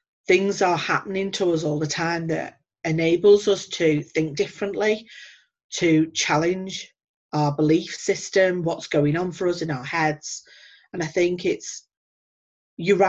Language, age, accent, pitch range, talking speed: English, 40-59, British, 165-215 Hz, 145 wpm